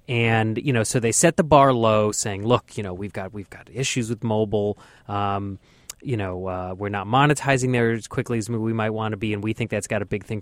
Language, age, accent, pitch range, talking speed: English, 30-49, American, 110-145 Hz, 255 wpm